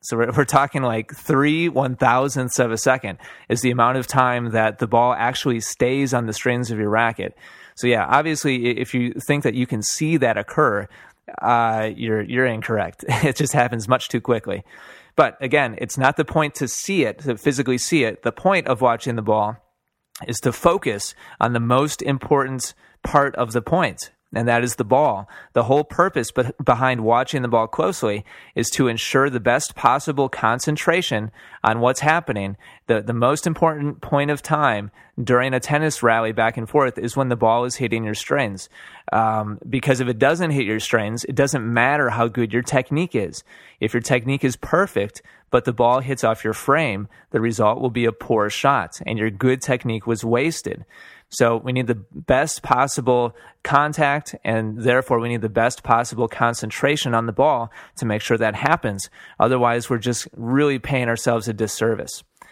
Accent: American